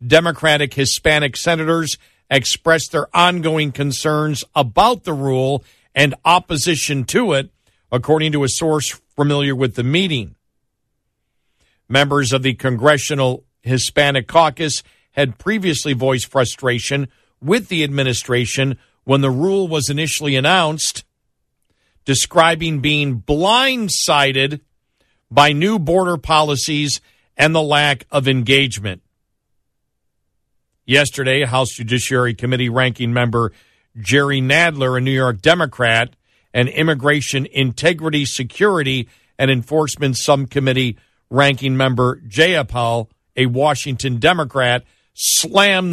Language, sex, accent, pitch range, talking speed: English, male, American, 130-160 Hz, 105 wpm